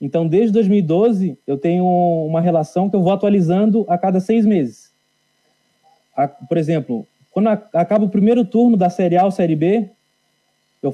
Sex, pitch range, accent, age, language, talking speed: male, 170-205 Hz, Brazilian, 20-39, Portuguese, 160 wpm